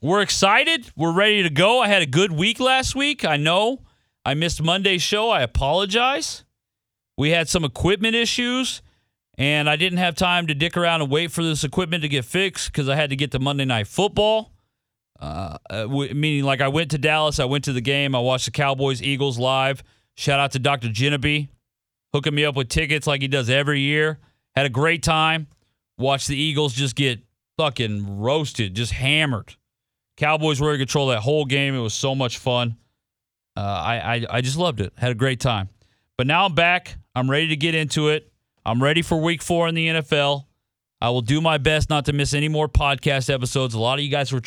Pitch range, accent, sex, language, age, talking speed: 125-170 Hz, American, male, English, 40-59, 210 wpm